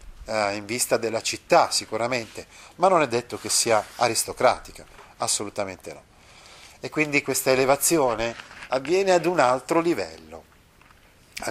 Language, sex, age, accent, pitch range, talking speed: Italian, male, 40-59, native, 105-150 Hz, 125 wpm